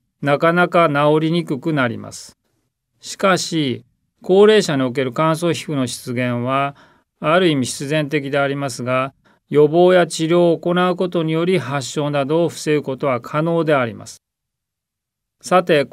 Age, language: 40-59, Japanese